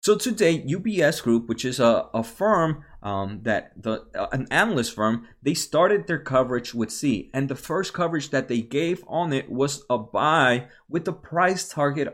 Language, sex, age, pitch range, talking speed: English, male, 20-39, 115-155 Hz, 190 wpm